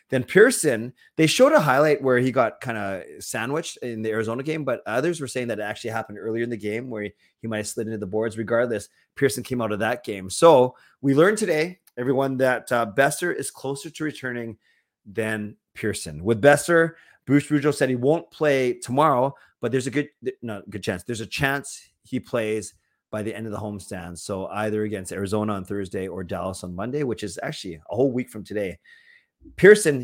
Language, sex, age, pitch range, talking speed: English, male, 30-49, 105-130 Hz, 205 wpm